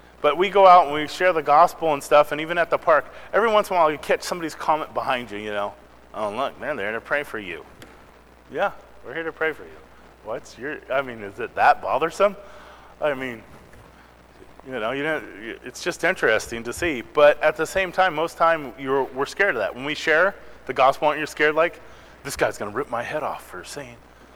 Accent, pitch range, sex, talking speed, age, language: American, 105-175 Hz, male, 235 wpm, 30-49, English